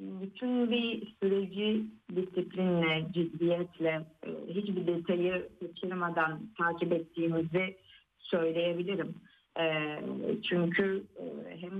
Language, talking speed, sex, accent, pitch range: Turkish, 65 wpm, female, native, 165-195 Hz